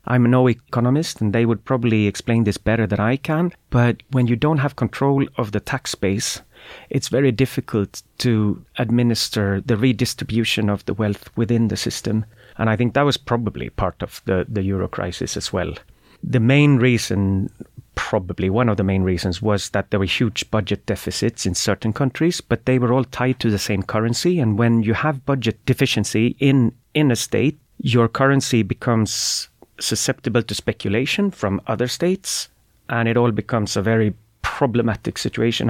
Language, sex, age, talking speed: English, male, 30-49, 175 wpm